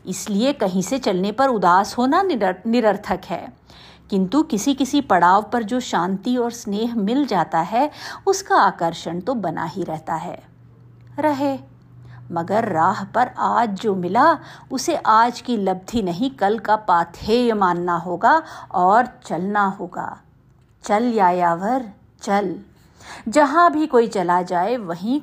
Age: 50-69